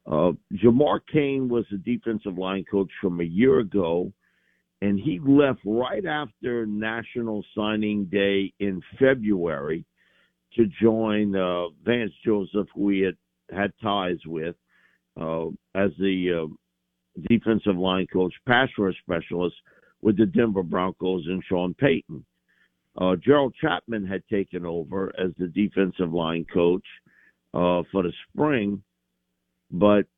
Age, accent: 50-69, American